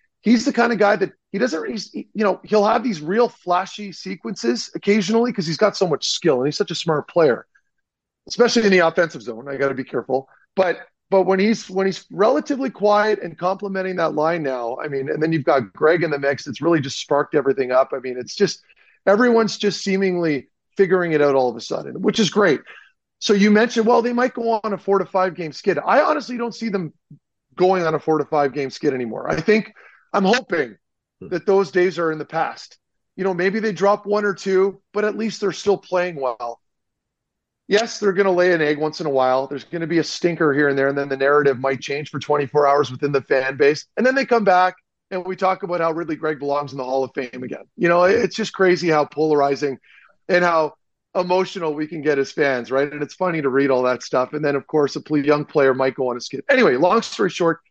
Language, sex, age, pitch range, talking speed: English, male, 40-59, 145-205 Hz, 240 wpm